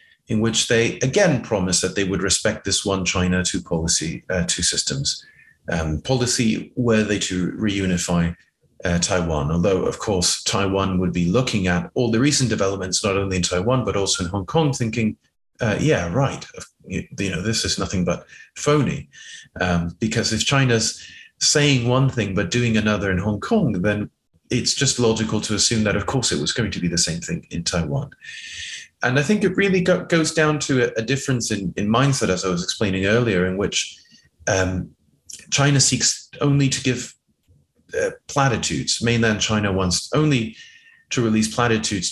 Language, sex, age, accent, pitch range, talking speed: English, male, 30-49, British, 95-130 Hz, 175 wpm